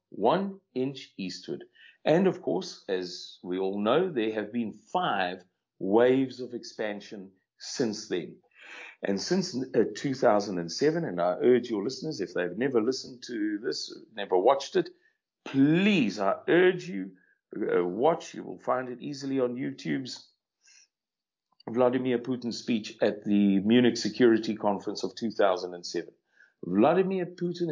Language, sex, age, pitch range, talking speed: English, male, 50-69, 115-190 Hz, 130 wpm